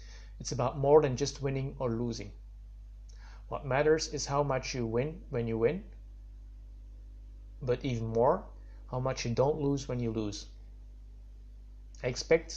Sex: male